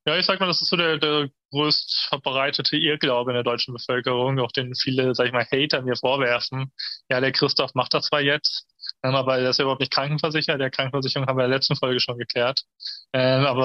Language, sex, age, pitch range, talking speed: German, male, 20-39, 125-140 Hz, 220 wpm